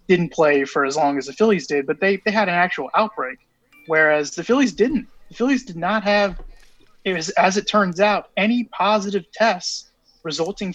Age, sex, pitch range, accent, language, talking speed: 20-39, male, 150-195 Hz, American, English, 195 wpm